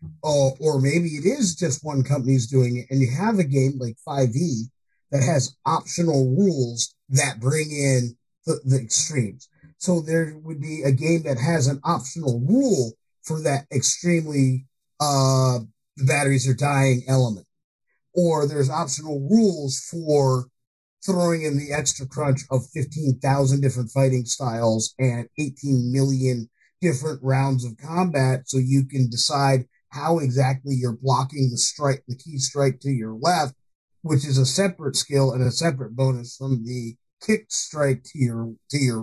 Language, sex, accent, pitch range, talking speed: English, male, American, 130-170 Hz, 160 wpm